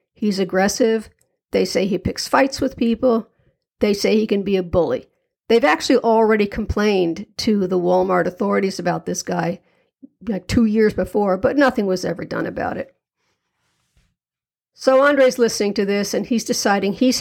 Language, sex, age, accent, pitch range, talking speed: English, female, 60-79, American, 200-255 Hz, 165 wpm